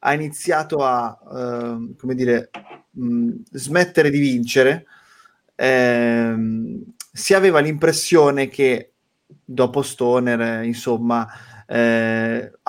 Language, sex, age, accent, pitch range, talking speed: Italian, male, 20-39, native, 120-145 Hz, 95 wpm